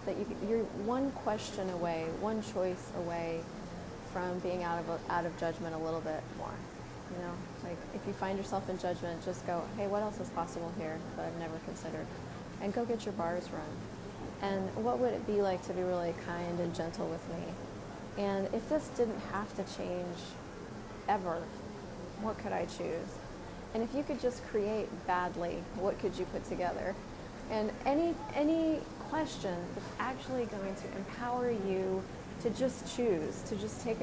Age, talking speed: 30-49, 175 wpm